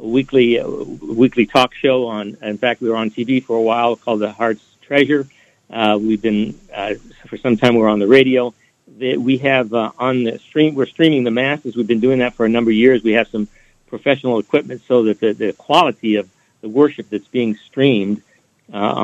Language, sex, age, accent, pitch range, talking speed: English, male, 60-79, American, 110-130 Hz, 215 wpm